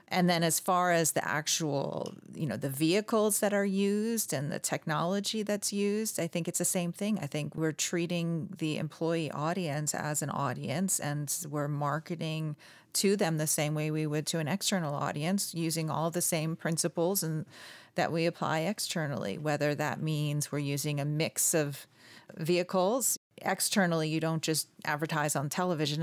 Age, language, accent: 40-59, English, American